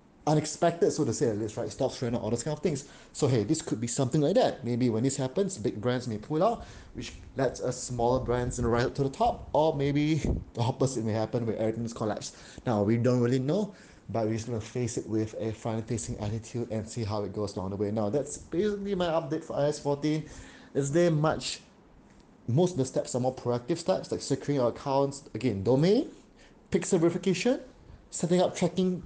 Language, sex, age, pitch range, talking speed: English, male, 20-39, 115-160 Hz, 220 wpm